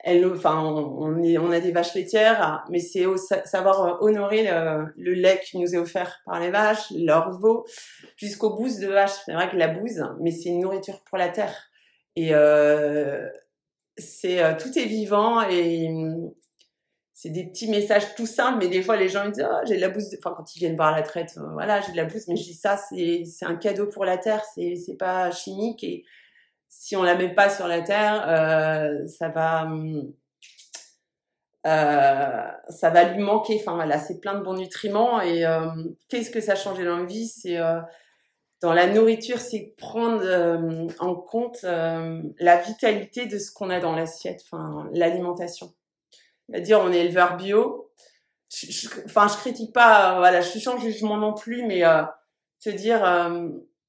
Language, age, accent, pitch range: French, 30-49, French, 170-215 Hz